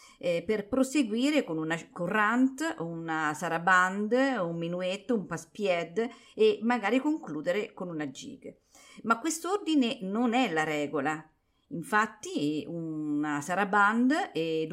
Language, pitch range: Italian, 165-245 Hz